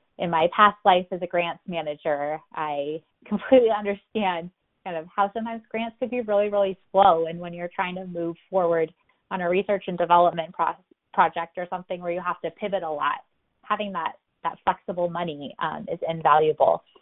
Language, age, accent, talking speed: English, 20-39, American, 185 wpm